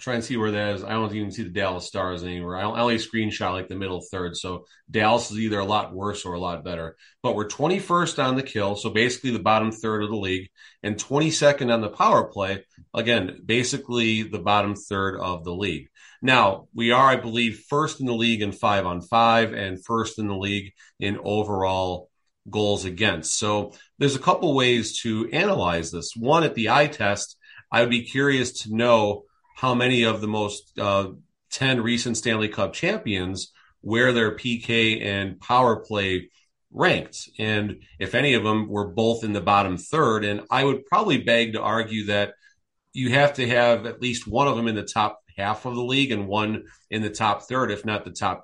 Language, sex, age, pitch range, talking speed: English, male, 30-49, 100-120 Hz, 205 wpm